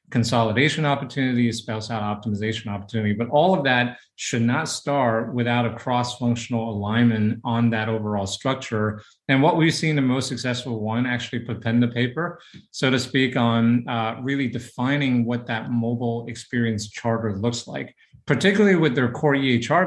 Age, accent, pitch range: 30-49, American, 115-130 Hz